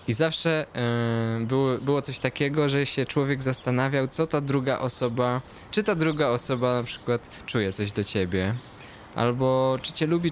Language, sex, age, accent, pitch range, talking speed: Polish, male, 20-39, native, 110-135 Hz, 165 wpm